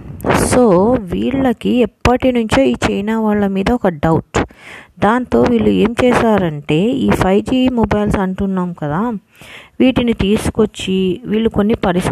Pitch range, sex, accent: 200-245 Hz, female, Indian